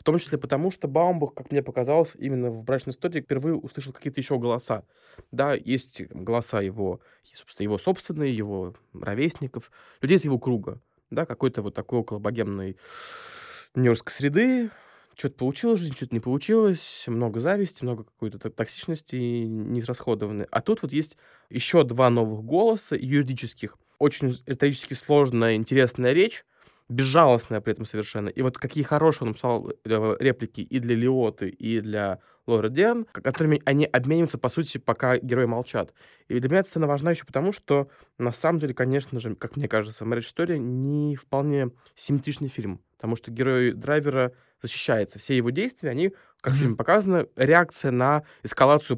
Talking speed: 160 wpm